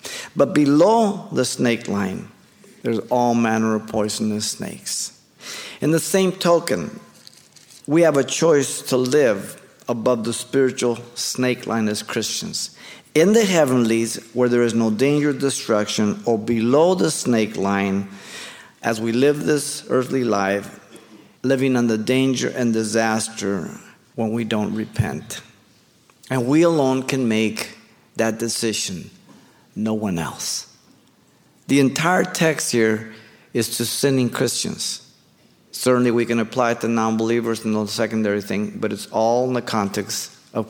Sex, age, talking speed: male, 50-69, 135 wpm